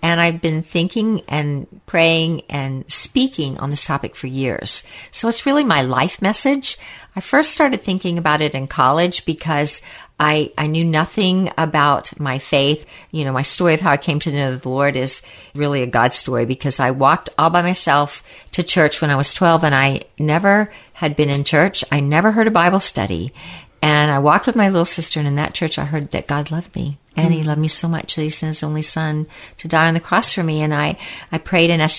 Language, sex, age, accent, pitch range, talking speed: English, female, 50-69, American, 145-175 Hz, 225 wpm